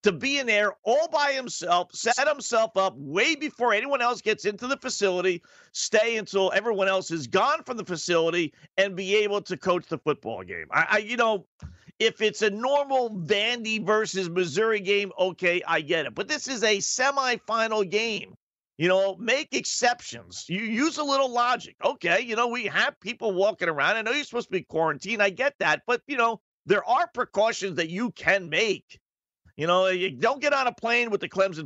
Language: English